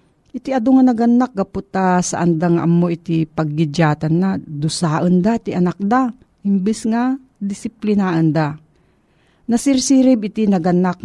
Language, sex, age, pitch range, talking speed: Filipino, female, 50-69, 165-205 Hz, 125 wpm